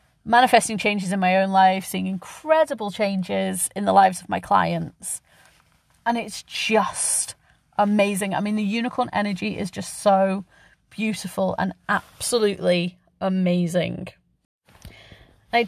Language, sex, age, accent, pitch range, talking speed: English, female, 30-49, British, 185-215 Hz, 125 wpm